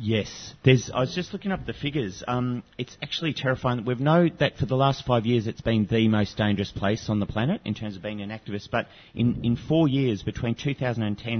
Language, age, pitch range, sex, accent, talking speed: English, 30-49, 105-120 Hz, male, Australian, 220 wpm